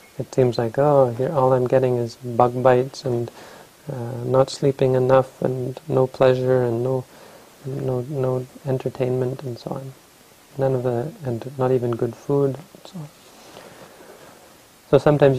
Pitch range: 120-135 Hz